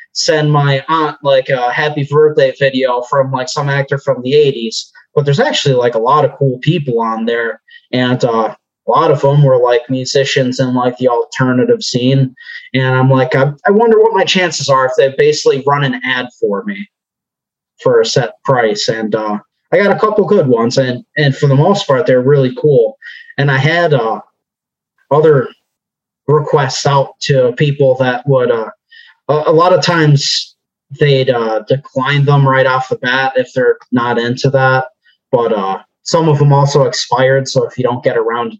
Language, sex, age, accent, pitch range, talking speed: English, male, 20-39, American, 130-175 Hz, 190 wpm